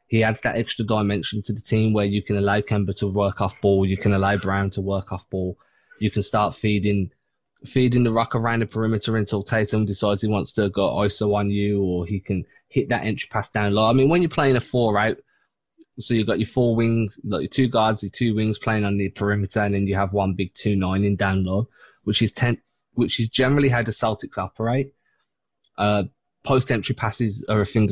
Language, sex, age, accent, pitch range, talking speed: English, male, 10-29, British, 100-115 Hz, 230 wpm